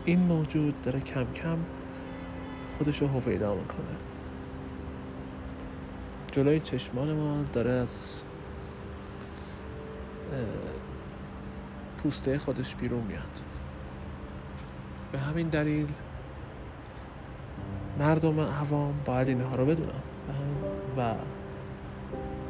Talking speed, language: 75 wpm, Persian